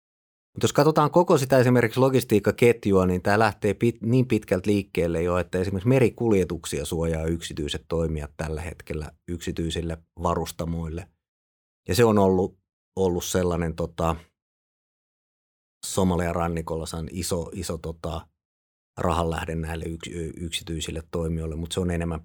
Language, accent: Finnish, native